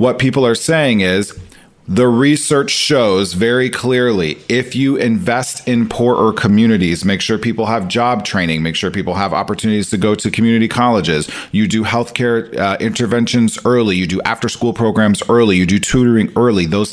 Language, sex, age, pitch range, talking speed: English, male, 40-59, 105-130 Hz, 175 wpm